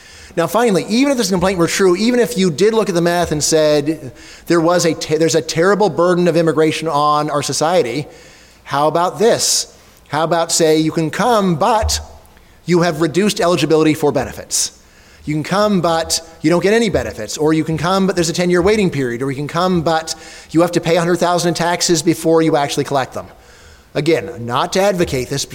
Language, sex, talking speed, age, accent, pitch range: English, male, 210 wpm, 30-49, American, 145-175 Hz